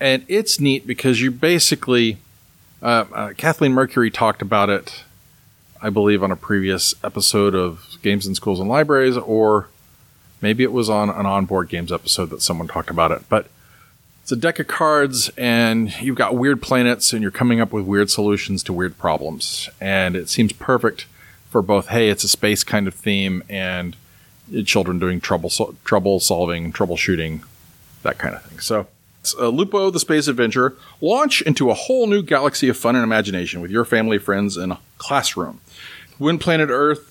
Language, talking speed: English, 180 wpm